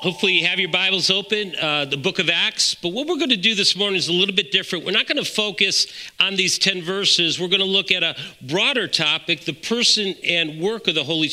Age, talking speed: 50-69, 255 wpm